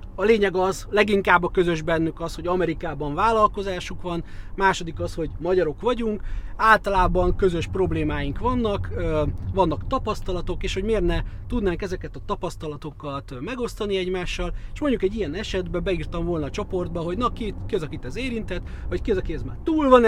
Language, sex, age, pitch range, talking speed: Hungarian, male, 30-49, 155-210 Hz, 170 wpm